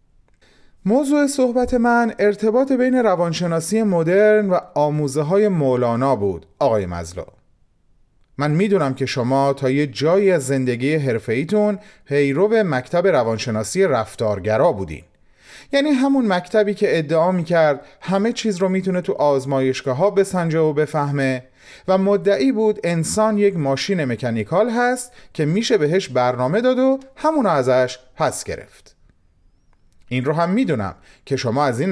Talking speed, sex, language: 135 wpm, male, Persian